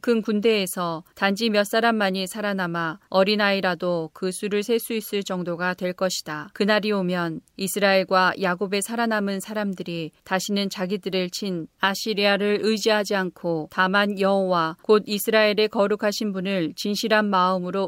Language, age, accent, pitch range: Korean, 40-59, native, 185-210 Hz